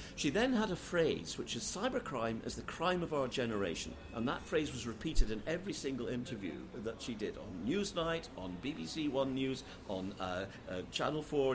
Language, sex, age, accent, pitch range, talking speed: English, male, 50-69, British, 110-165 Hz, 190 wpm